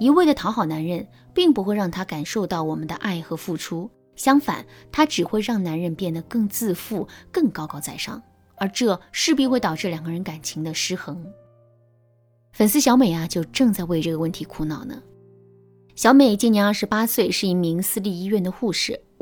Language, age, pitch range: Chinese, 20-39, 165-235 Hz